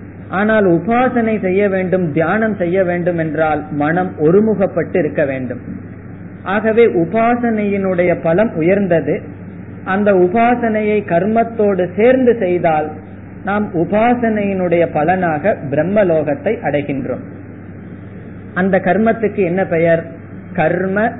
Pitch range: 150-205 Hz